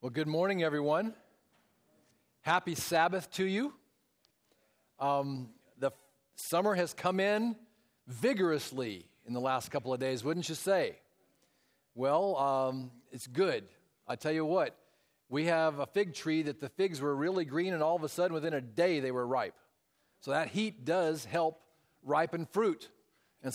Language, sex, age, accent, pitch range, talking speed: English, male, 40-59, American, 125-160 Hz, 160 wpm